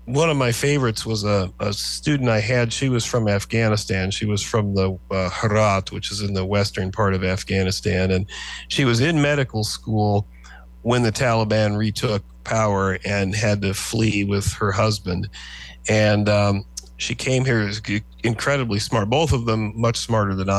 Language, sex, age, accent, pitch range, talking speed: English, male, 40-59, American, 100-120 Hz, 170 wpm